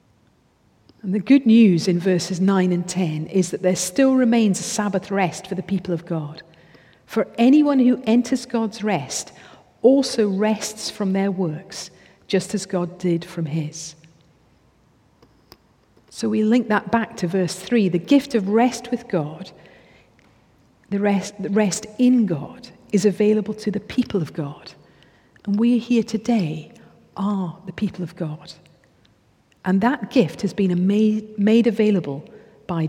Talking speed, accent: 150 wpm, British